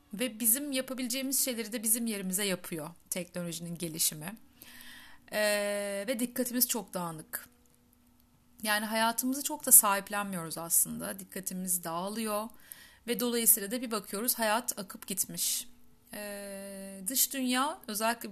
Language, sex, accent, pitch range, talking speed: Turkish, female, native, 190-240 Hz, 115 wpm